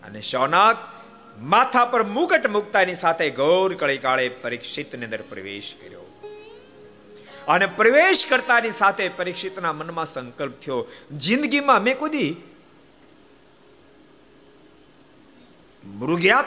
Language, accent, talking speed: Gujarati, native, 65 wpm